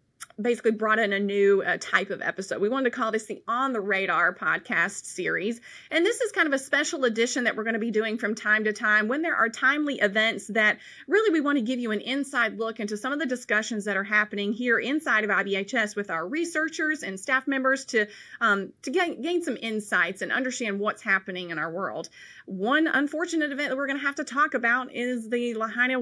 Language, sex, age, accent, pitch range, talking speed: English, female, 30-49, American, 205-255 Hz, 225 wpm